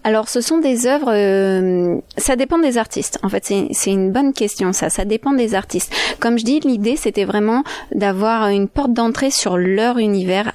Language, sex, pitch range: French, female, 190-235 Hz